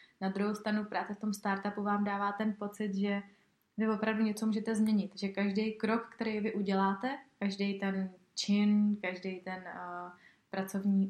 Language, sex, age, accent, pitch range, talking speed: Czech, female, 20-39, native, 195-215 Hz, 160 wpm